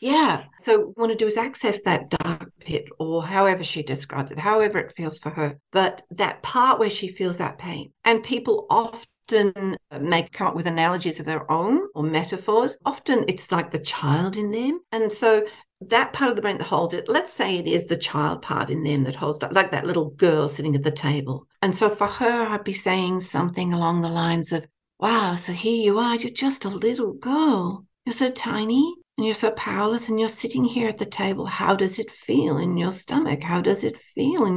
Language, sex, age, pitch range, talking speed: English, female, 50-69, 175-230 Hz, 220 wpm